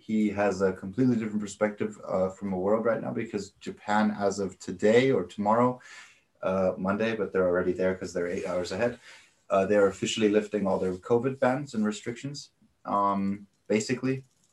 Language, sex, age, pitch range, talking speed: English, male, 20-39, 95-115 Hz, 175 wpm